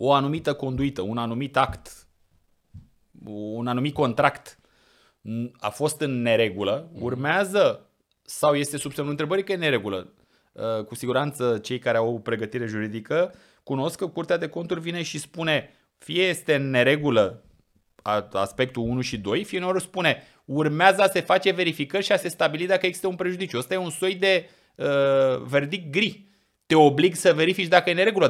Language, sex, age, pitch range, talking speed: Romanian, male, 30-49, 115-155 Hz, 165 wpm